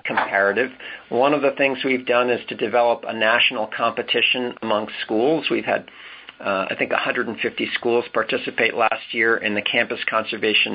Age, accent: 50-69, American